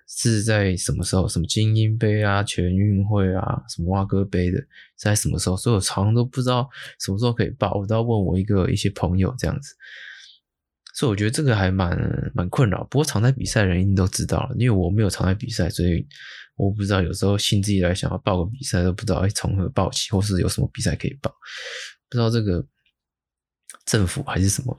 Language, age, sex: Chinese, 20-39, male